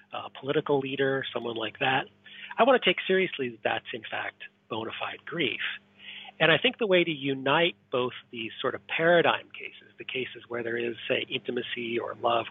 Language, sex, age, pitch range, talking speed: English, male, 40-59, 115-145 Hz, 190 wpm